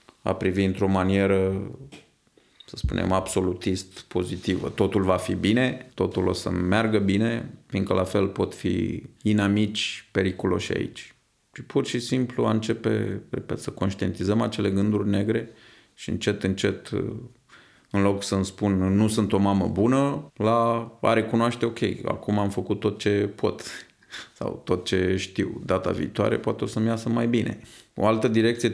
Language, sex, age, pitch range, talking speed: Romanian, male, 30-49, 95-115 Hz, 155 wpm